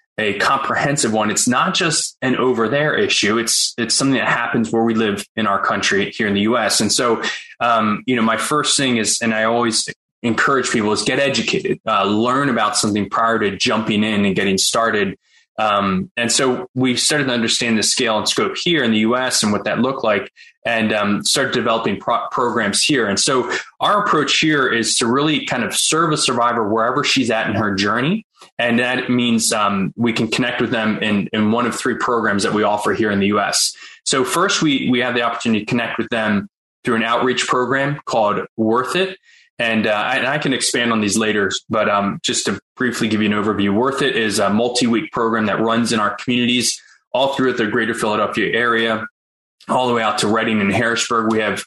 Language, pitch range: English, 110-130 Hz